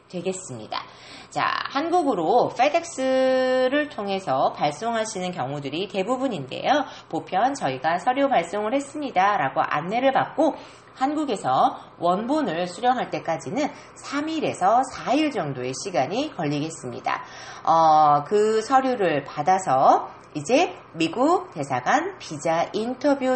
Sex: female